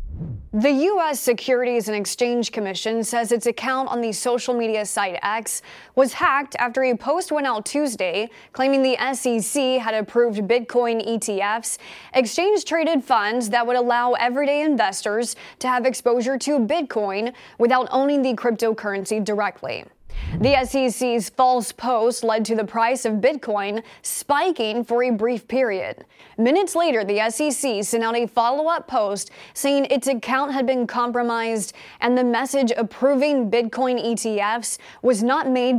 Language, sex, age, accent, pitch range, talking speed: English, female, 20-39, American, 225-265 Hz, 145 wpm